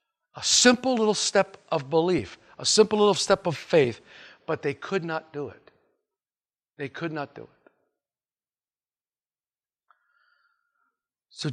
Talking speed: 125 wpm